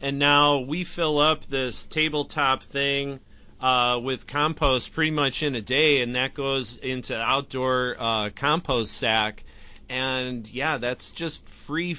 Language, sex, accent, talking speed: English, male, American, 145 wpm